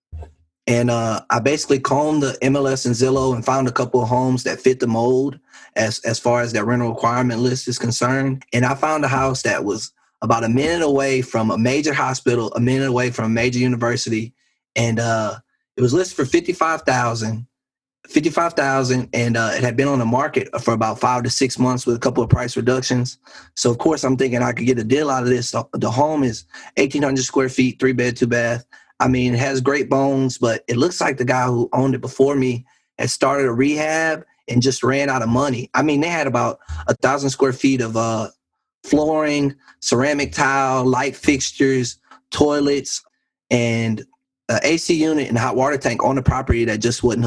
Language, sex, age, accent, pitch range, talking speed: English, male, 20-39, American, 120-135 Hz, 200 wpm